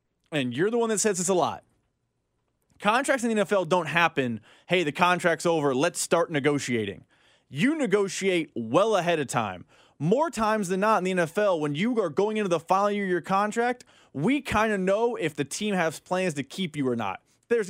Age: 20-39